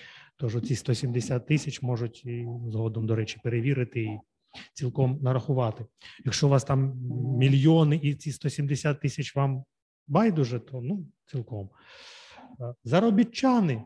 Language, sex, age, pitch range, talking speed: Ukrainian, male, 30-49, 120-150 Hz, 115 wpm